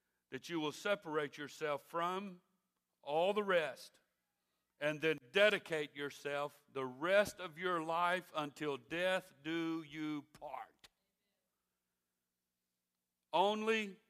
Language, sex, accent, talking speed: English, male, American, 100 wpm